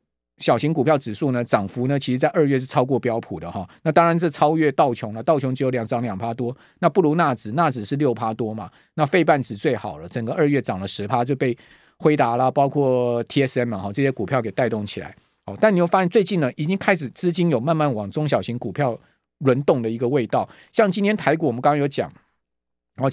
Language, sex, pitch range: Chinese, male, 120-175 Hz